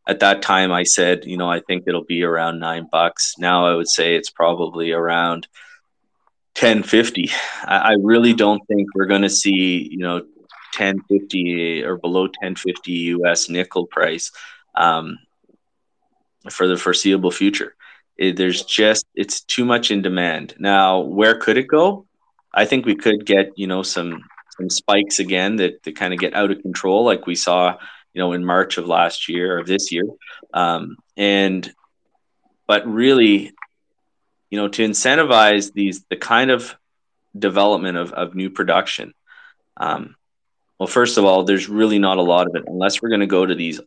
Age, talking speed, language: 20-39, 170 wpm, English